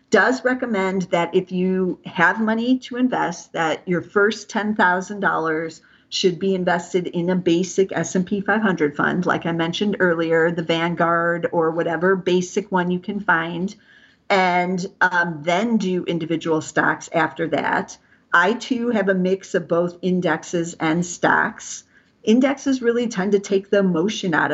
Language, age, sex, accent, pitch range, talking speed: English, 50-69, female, American, 165-190 Hz, 150 wpm